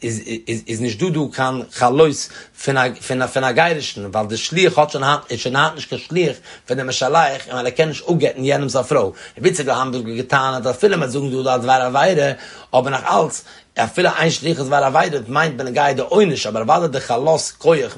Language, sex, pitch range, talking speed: English, male, 115-145 Hz, 165 wpm